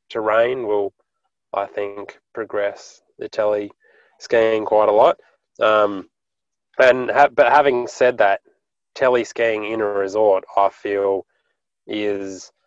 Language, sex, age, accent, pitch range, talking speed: English, male, 20-39, Australian, 95-115 Hz, 125 wpm